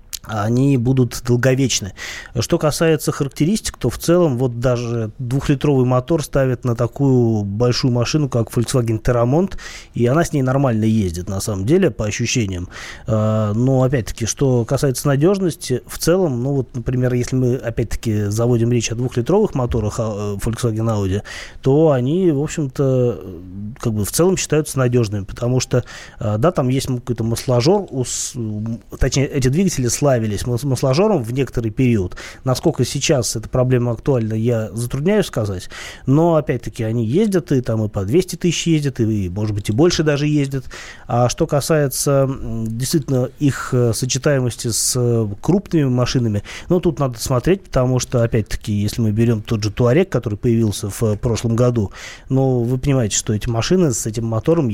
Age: 20-39